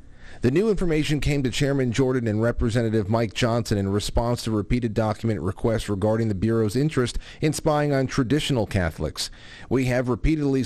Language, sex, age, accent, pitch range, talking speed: English, male, 40-59, American, 110-135 Hz, 165 wpm